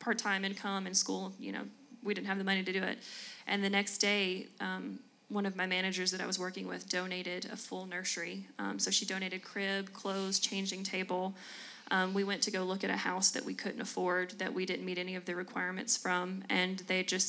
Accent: American